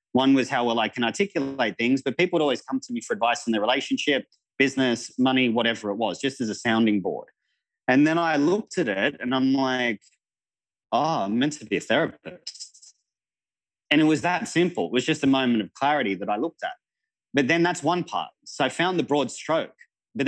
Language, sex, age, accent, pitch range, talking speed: English, male, 30-49, Australian, 110-135 Hz, 220 wpm